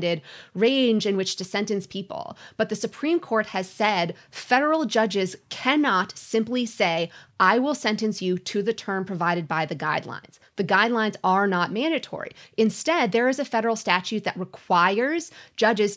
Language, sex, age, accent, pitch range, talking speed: English, female, 30-49, American, 185-240 Hz, 160 wpm